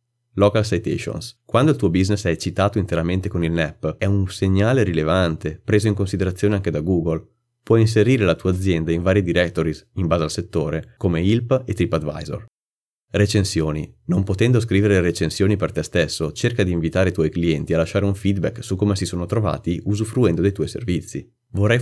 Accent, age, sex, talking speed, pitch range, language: native, 30-49, male, 180 wpm, 85-105 Hz, Italian